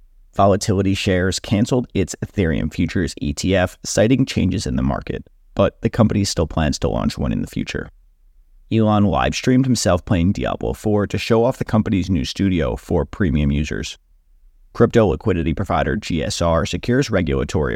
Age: 30-49